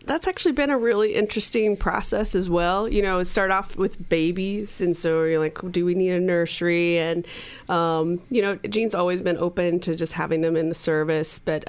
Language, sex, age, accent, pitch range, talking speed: English, female, 20-39, American, 155-190 Hz, 215 wpm